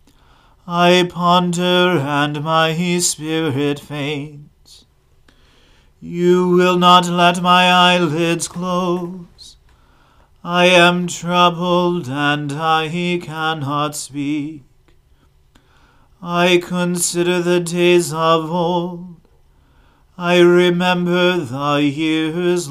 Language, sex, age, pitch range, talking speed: English, male, 40-59, 150-175 Hz, 80 wpm